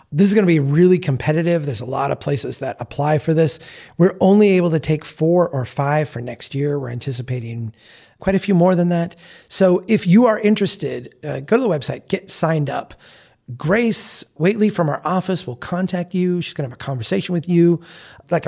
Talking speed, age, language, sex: 210 wpm, 30-49, English, male